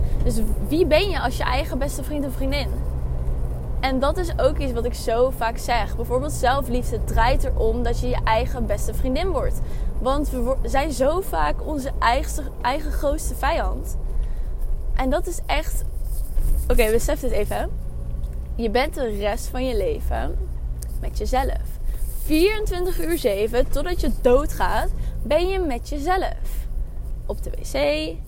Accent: Dutch